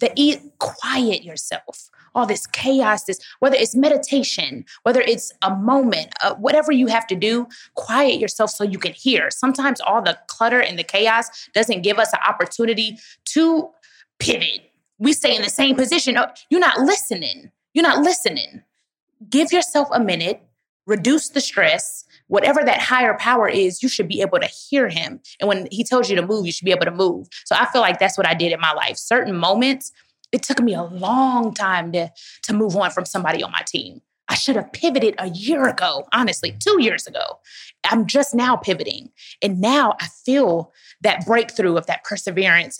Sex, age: female, 20-39